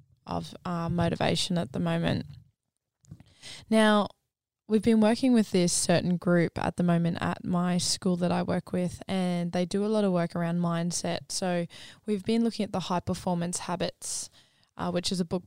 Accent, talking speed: Australian, 180 wpm